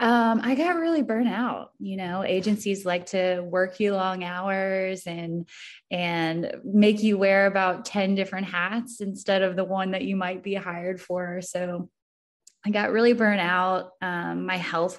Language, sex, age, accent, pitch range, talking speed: English, female, 20-39, American, 170-200 Hz, 170 wpm